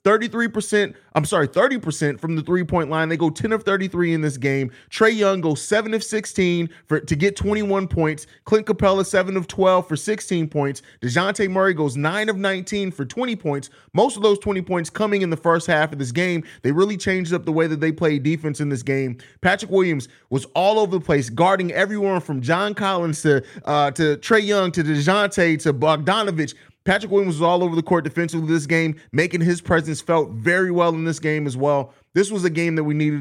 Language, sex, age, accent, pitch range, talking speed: English, male, 30-49, American, 150-190 Hz, 210 wpm